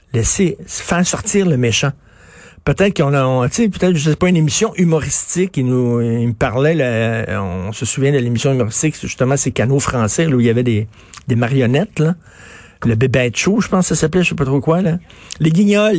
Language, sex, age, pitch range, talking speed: French, male, 50-69, 130-175 Hz, 225 wpm